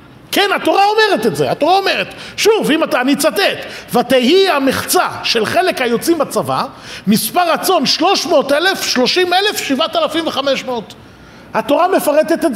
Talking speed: 155 wpm